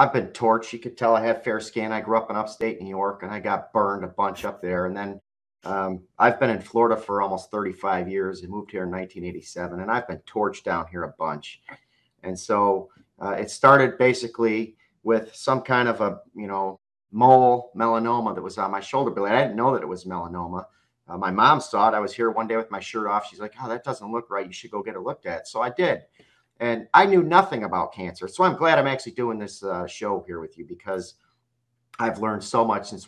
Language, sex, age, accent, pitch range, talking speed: English, male, 40-59, American, 95-115 Hz, 240 wpm